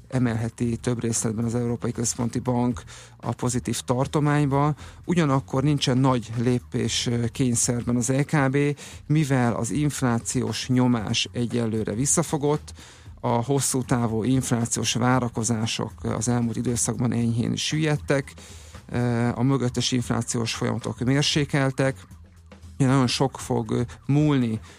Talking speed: 100 wpm